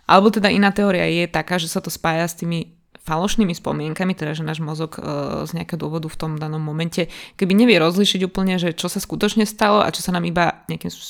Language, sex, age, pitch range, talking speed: Slovak, female, 20-39, 165-195 Hz, 220 wpm